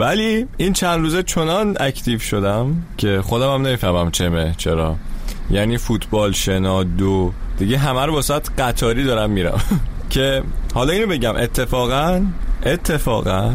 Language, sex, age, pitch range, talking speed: Persian, male, 30-49, 95-140 Hz, 130 wpm